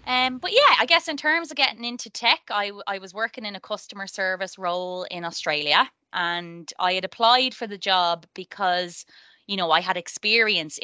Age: 20-39